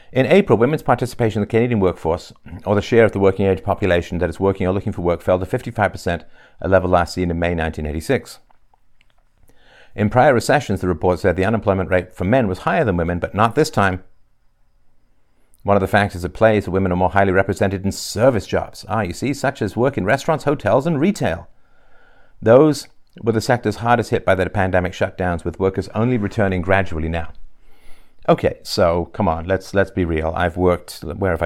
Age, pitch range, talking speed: 50-69, 85-110 Hz, 205 wpm